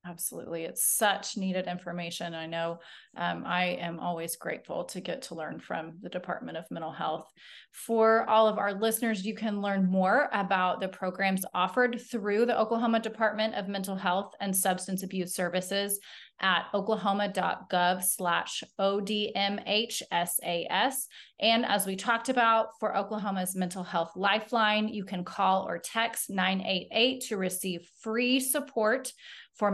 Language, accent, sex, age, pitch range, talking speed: English, American, female, 30-49, 180-215 Hz, 145 wpm